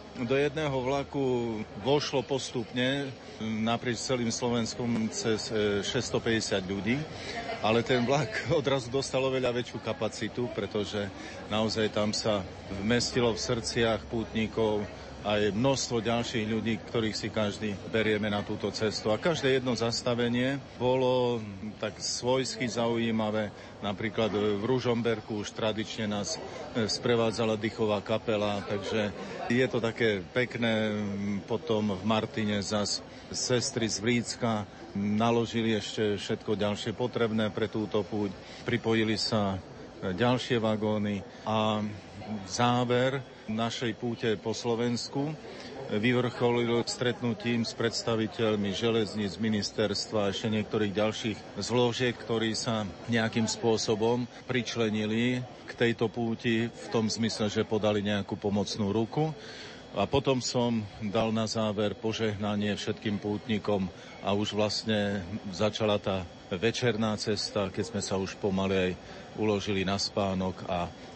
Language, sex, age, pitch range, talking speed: Slovak, male, 40-59, 105-120 Hz, 115 wpm